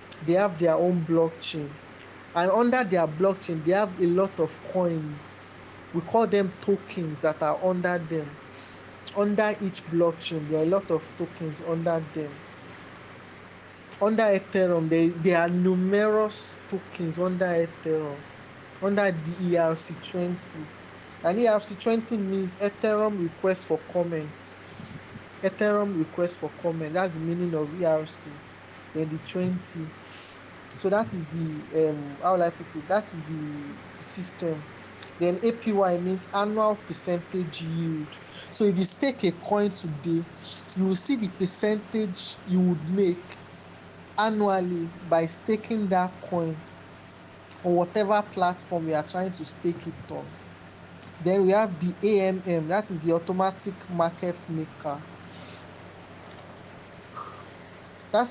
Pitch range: 155-190 Hz